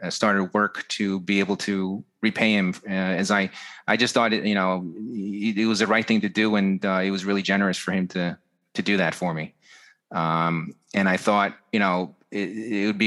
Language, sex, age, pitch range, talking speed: English, male, 30-49, 100-120 Hz, 225 wpm